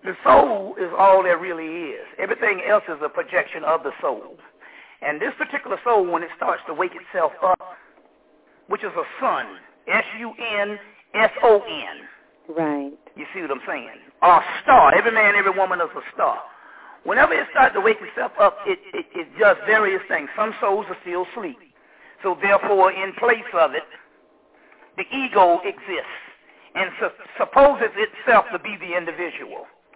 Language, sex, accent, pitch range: English, male, American, 185-255 Hz